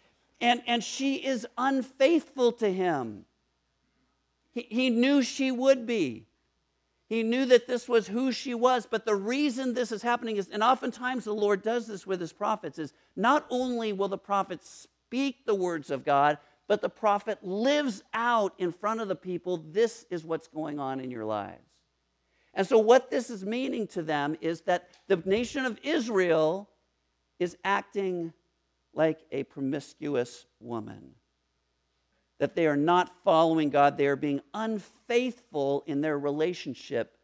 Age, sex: 50-69, male